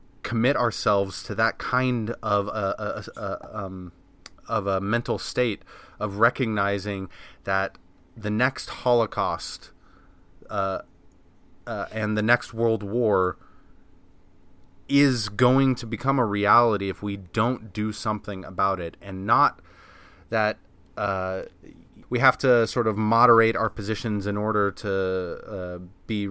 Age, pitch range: 30-49, 95-115 Hz